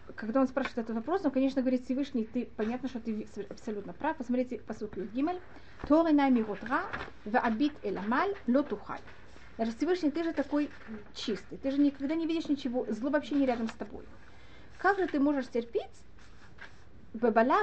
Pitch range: 225-300 Hz